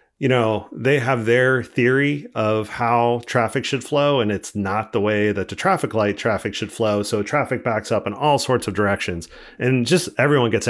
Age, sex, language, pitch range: 40-59, male, English, 100-130 Hz